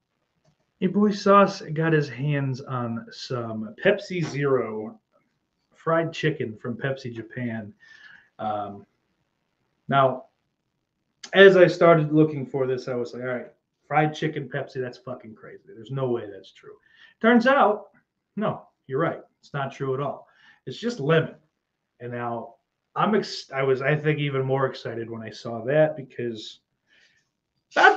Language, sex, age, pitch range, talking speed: English, male, 30-49, 120-180 Hz, 145 wpm